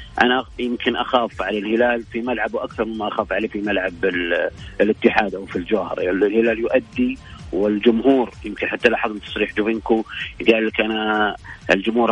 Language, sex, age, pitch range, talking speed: English, male, 50-69, 110-130 Hz, 135 wpm